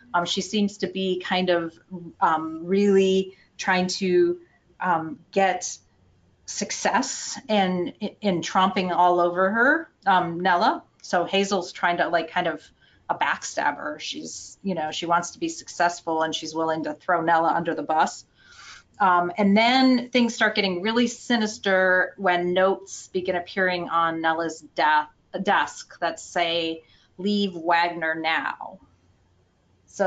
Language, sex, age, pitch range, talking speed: English, female, 30-49, 170-205 Hz, 140 wpm